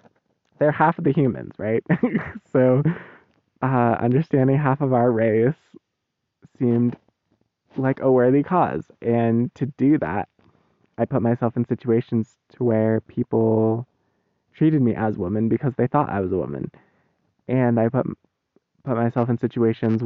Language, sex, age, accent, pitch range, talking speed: English, male, 20-39, American, 115-160 Hz, 145 wpm